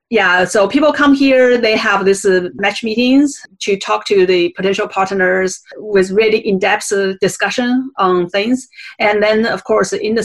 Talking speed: 170 wpm